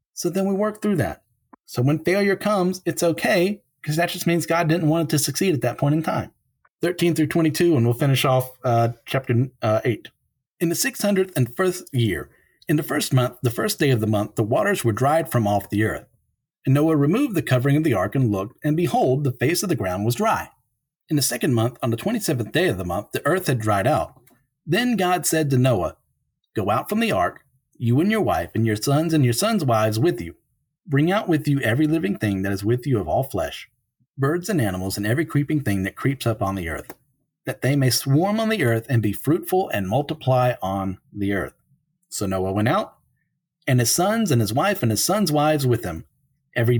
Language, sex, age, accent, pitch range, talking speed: English, male, 40-59, American, 115-165 Hz, 225 wpm